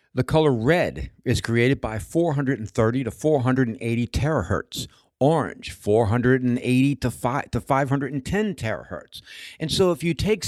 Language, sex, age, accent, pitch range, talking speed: English, male, 60-79, American, 125-175 Hz, 125 wpm